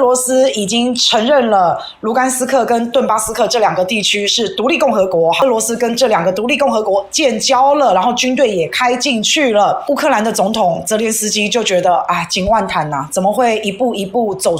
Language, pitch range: Chinese, 200-275 Hz